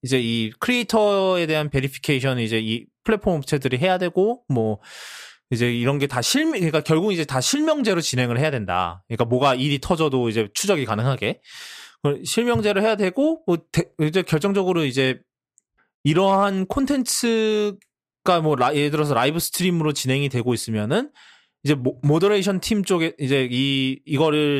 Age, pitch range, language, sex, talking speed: 20-39, 130-190 Hz, English, male, 140 wpm